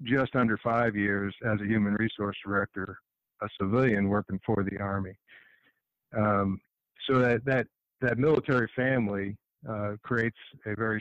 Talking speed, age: 140 wpm, 50-69